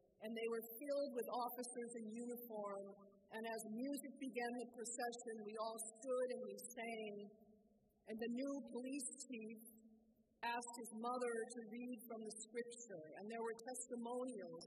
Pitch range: 215-260 Hz